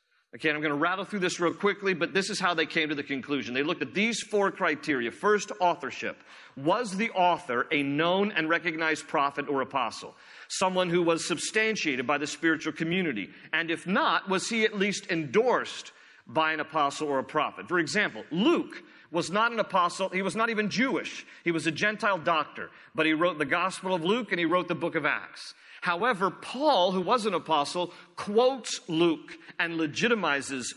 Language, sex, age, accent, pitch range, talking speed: English, male, 40-59, American, 150-200 Hz, 195 wpm